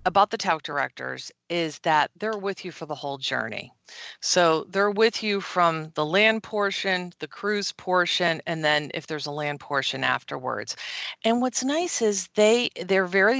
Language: English